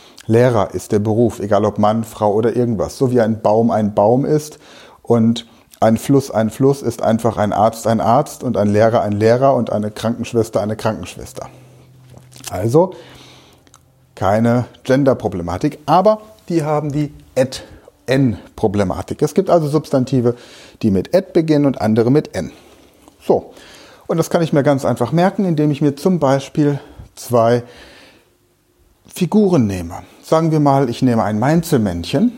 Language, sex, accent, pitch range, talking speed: German, male, German, 115-145 Hz, 155 wpm